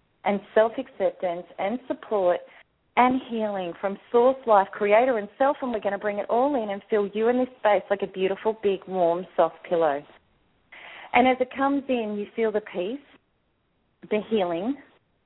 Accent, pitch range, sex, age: Australian, 195-255 Hz, female, 40-59